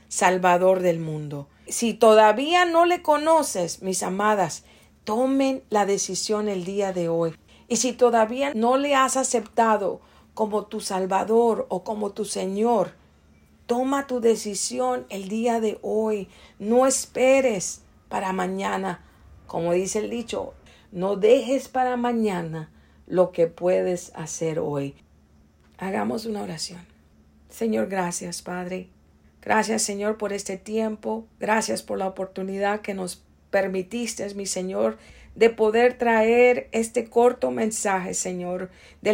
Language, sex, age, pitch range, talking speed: English, female, 50-69, 190-240 Hz, 125 wpm